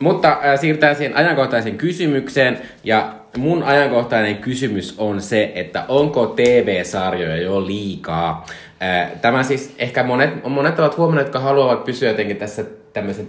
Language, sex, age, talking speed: Finnish, male, 20-39, 140 wpm